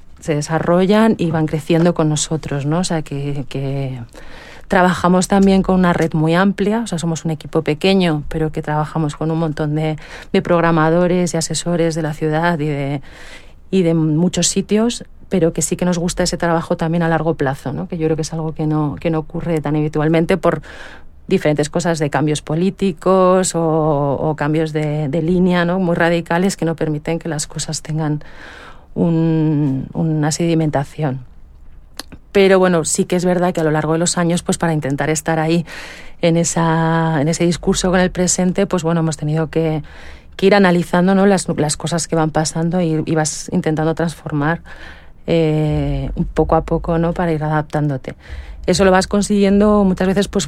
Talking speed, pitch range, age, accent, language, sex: 190 wpm, 155-180 Hz, 40-59, Spanish, English, female